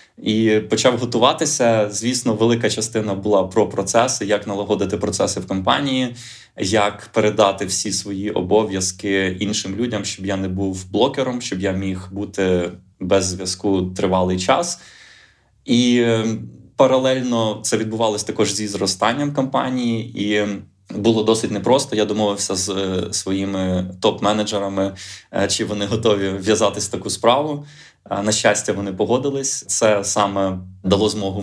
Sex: male